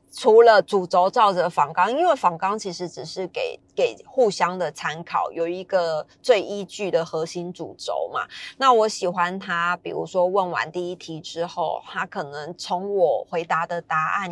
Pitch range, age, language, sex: 170-215 Hz, 20-39, Chinese, female